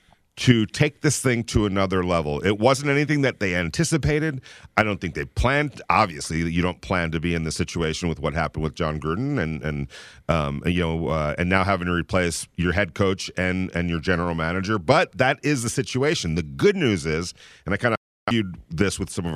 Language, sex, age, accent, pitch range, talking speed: English, male, 40-59, American, 85-115 Hz, 215 wpm